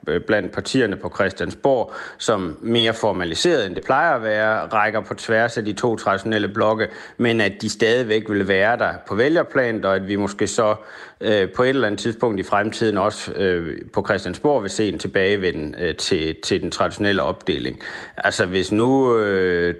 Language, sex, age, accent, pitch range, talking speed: Danish, male, 30-49, native, 95-115 Hz, 180 wpm